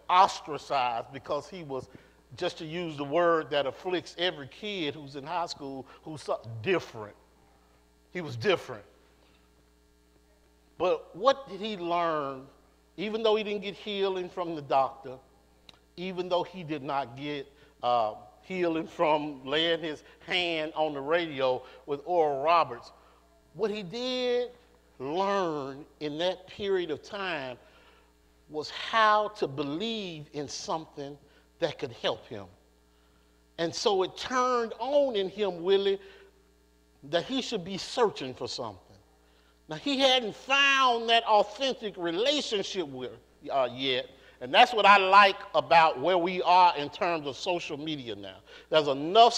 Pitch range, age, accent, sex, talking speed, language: 135-210 Hz, 50-69, American, male, 140 wpm, English